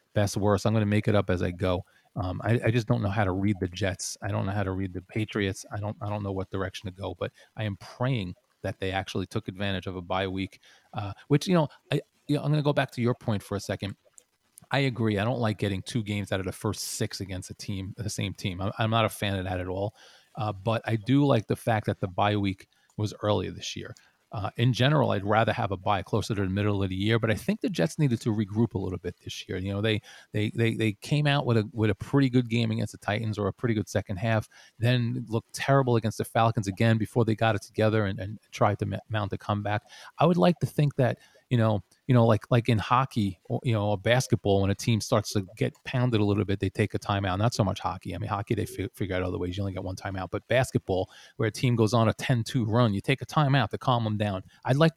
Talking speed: 275 wpm